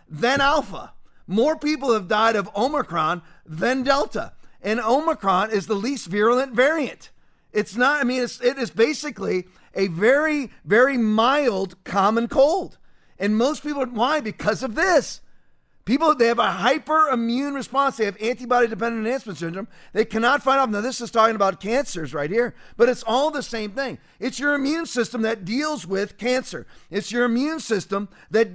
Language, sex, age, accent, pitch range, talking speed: English, male, 40-59, American, 205-270 Hz, 165 wpm